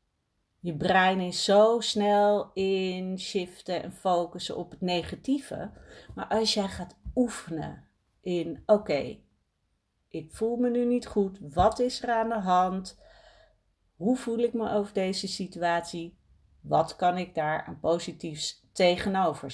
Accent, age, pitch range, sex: Dutch, 40-59, 160-210 Hz, female